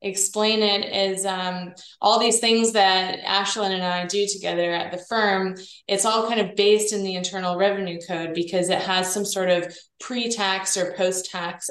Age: 20-39